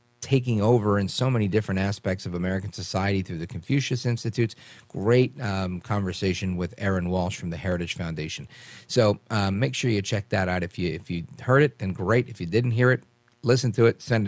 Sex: male